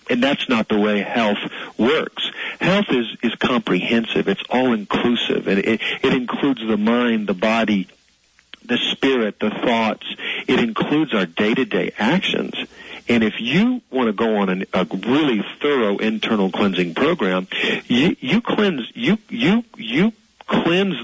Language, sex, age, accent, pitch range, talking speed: English, male, 50-69, American, 105-140 Hz, 155 wpm